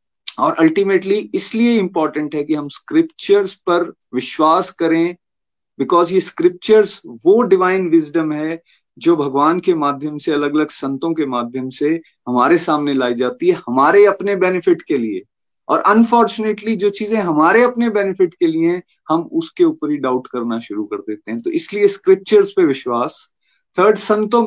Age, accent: 30-49, native